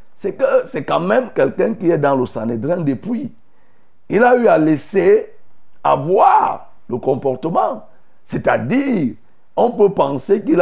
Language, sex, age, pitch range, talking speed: French, male, 60-79, 130-190 Hz, 140 wpm